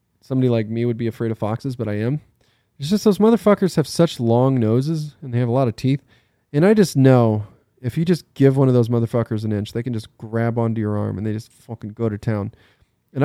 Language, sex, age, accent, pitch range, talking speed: English, male, 20-39, American, 105-125 Hz, 250 wpm